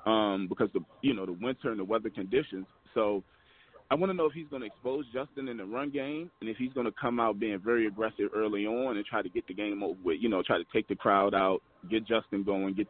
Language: English